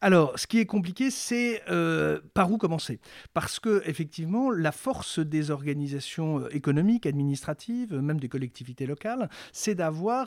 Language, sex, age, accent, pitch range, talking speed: French, male, 50-69, French, 155-205 Hz, 145 wpm